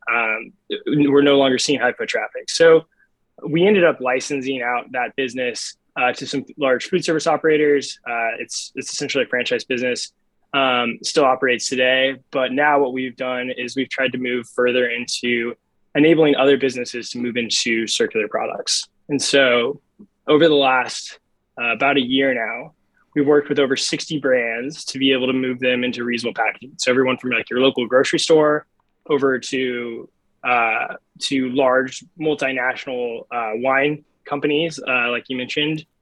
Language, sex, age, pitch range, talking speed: English, male, 20-39, 125-145 Hz, 165 wpm